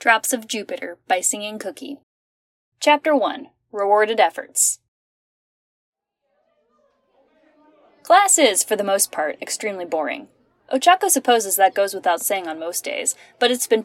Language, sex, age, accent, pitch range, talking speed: English, female, 10-29, American, 180-270 Hz, 130 wpm